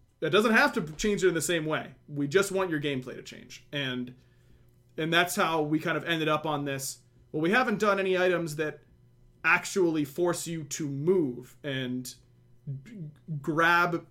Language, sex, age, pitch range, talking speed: English, male, 30-49, 130-170 Hz, 180 wpm